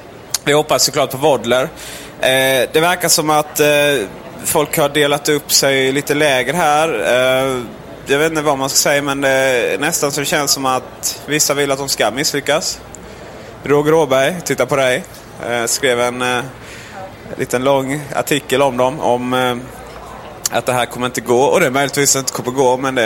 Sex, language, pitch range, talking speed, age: male, Swedish, 120-145 Hz, 200 wpm, 20-39